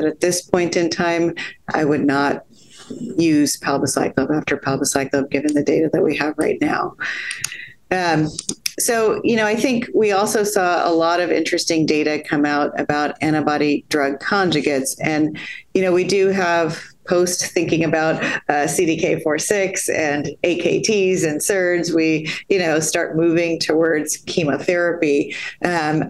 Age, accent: 40-59, American